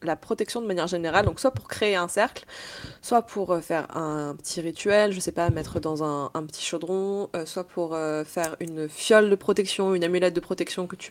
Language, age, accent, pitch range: French, 20-39, French, 165-205 Hz